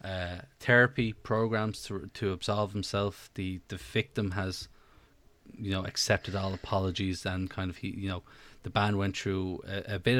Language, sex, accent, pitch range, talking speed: English, male, Irish, 95-110 Hz, 170 wpm